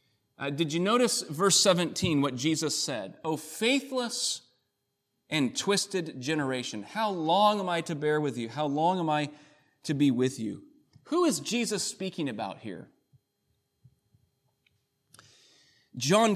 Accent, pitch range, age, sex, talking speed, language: American, 150-215 Hz, 30-49, male, 135 wpm, English